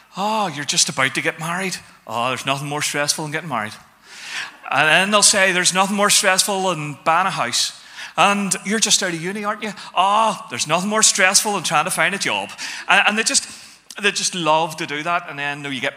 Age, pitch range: 30-49, 135-190 Hz